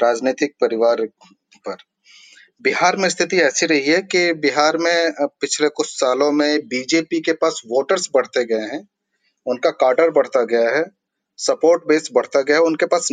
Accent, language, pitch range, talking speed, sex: native, Hindi, 135-165 Hz, 190 wpm, male